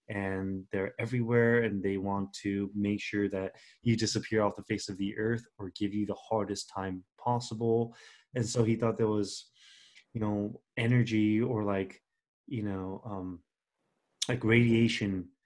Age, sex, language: 30-49, male, English